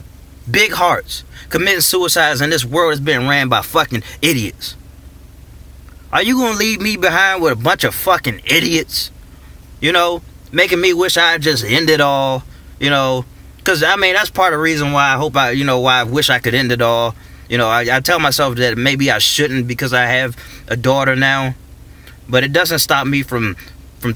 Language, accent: English, American